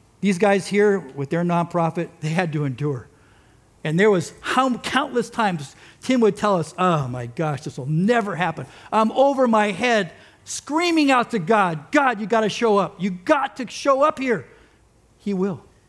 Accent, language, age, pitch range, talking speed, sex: American, English, 50-69, 140-230 Hz, 180 wpm, male